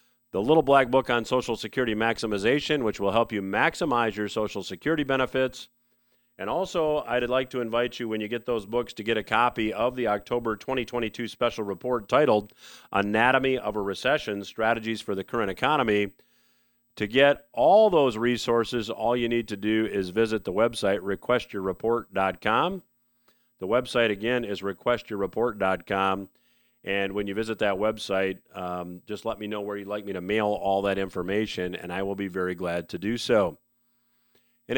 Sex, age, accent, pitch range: male, 40-59, American, 105-125 Hz